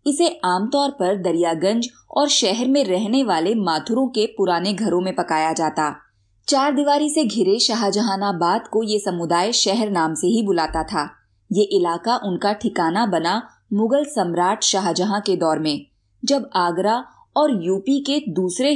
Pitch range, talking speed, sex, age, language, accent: 175-245 Hz, 150 wpm, female, 20-39, Hindi, native